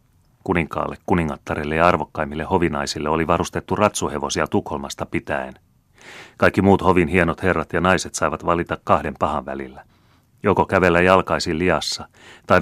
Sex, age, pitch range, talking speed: male, 30-49, 75-95 Hz, 130 wpm